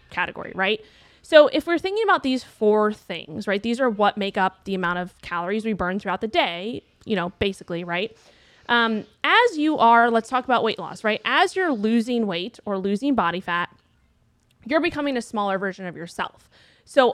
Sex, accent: female, American